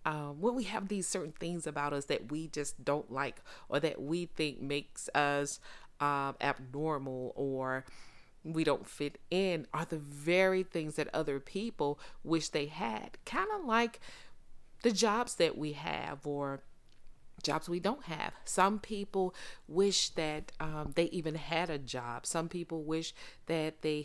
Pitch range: 150-195 Hz